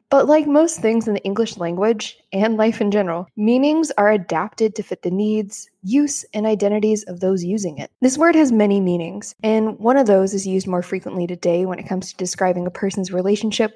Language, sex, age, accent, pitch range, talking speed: English, female, 20-39, American, 185-230 Hz, 210 wpm